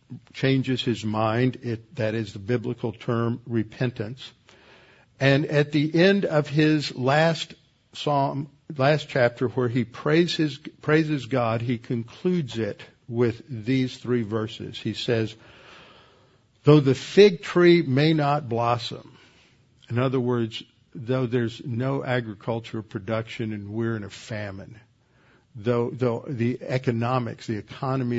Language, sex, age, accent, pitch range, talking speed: English, male, 50-69, American, 115-140 Hz, 130 wpm